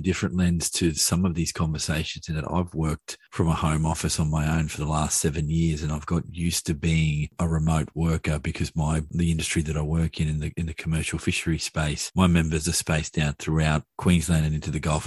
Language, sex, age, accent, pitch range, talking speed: English, male, 40-59, Australian, 80-85 Hz, 225 wpm